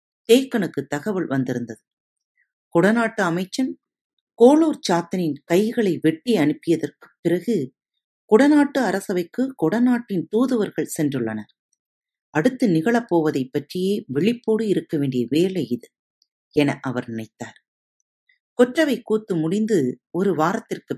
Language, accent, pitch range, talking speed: Tamil, native, 155-235 Hz, 90 wpm